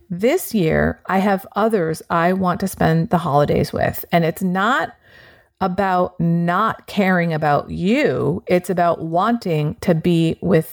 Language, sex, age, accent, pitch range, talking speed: English, female, 40-59, American, 165-205 Hz, 145 wpm